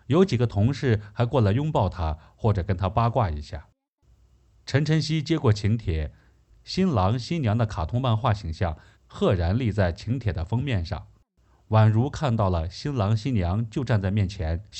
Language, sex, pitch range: Chinese, male, 95-130 Hz